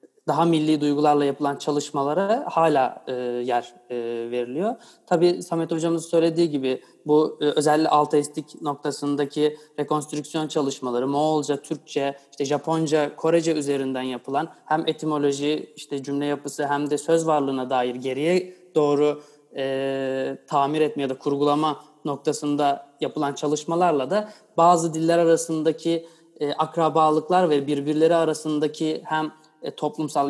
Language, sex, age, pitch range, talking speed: Turkish, male, 30-49, 135-155 Hz, 120 wpm